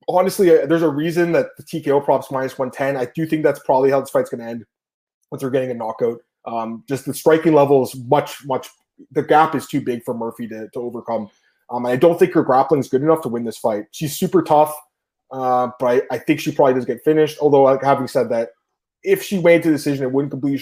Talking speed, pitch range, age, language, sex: 245 wpm, 125-155 Hz, 20-39, English, male